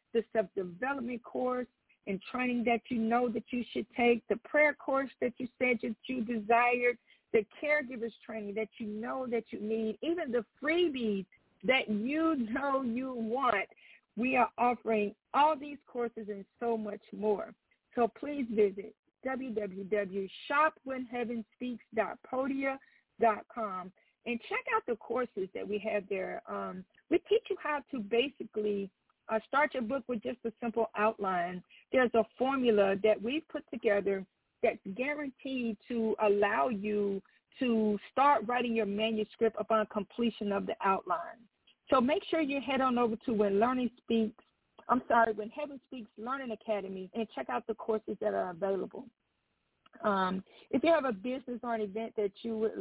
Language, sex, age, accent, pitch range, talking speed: English, female, 50-69, American, 215-260 Hz, 155 wpm